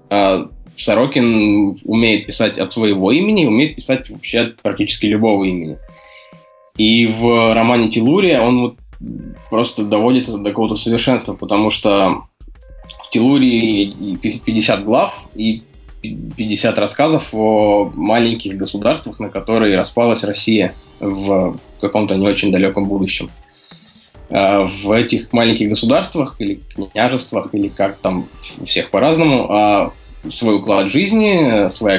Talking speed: 115 wpm